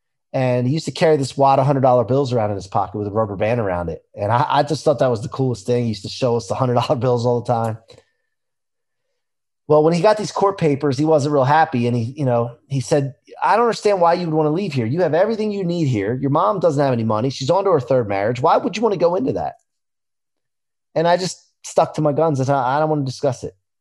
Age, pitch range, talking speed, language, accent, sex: 30-49, 120-155 Hz, 275 wpm, English, American, male